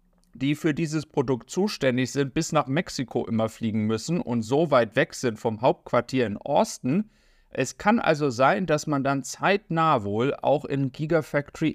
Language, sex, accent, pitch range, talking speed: German, male, German, 120-165 Hz, 170 wpm